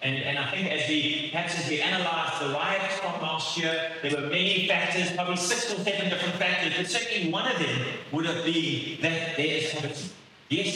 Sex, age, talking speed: male, 30-49, 210 wpm